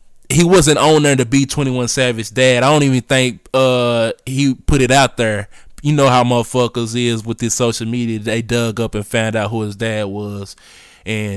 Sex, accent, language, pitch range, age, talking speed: male, American, English, 115-135 Hz, 20-39, 210 wpm